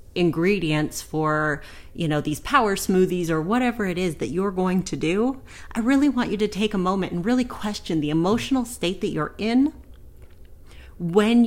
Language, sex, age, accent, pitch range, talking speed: English, female, 30-49, American, 150-210 Hz, 180 wpm